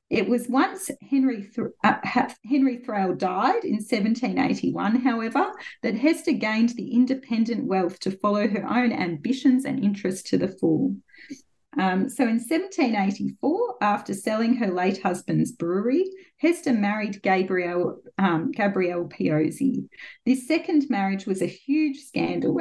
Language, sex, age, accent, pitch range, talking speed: English, female, 30-49, Australian, 190-265 Hz, 135 wpm